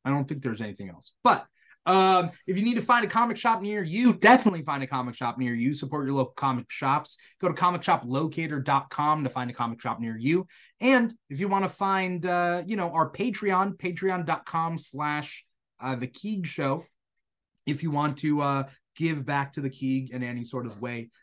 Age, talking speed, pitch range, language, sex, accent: 30-49, 195 wpm, 130-170 Hz, English, male, American